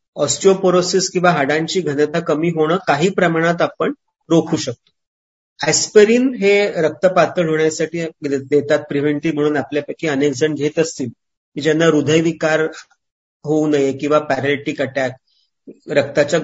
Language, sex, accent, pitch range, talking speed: English, male, Indian, 145-180 Hz, 125 wpm